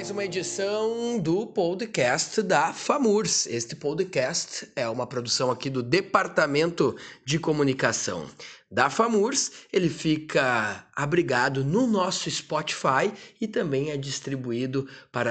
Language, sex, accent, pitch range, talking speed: Portuguese, male, Brazilian, 140-190 Hz, 120 wpm